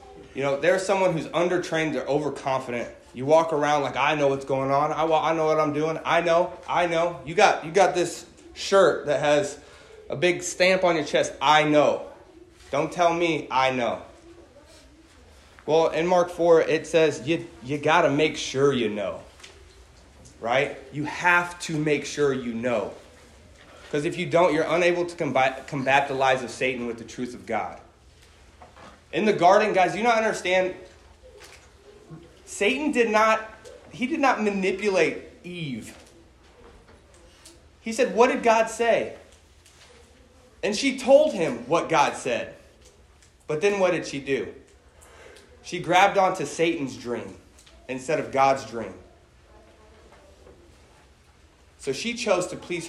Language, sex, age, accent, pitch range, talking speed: English, male, 20-39, American, 130-180 Hz, 155 wpm